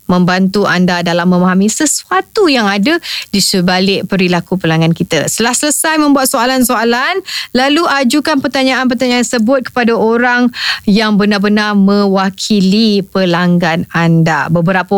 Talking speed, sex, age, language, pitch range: 110 wpm, female, 20-39, Indonesian, 190-260 Hz